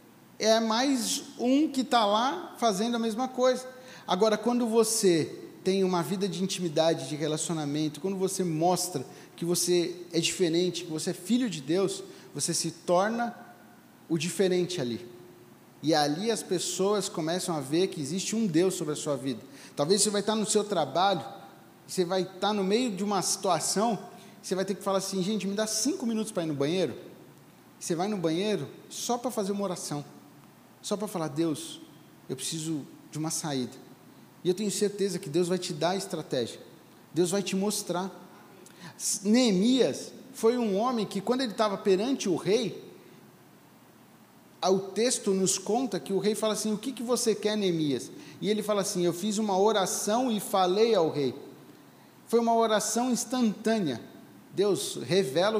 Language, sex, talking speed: Portuguese, male, 175 wpm